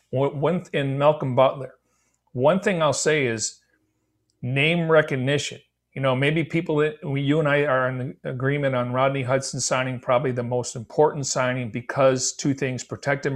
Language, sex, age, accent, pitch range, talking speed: English, male, 50-69, American, 125-145 Hz, 160 wpm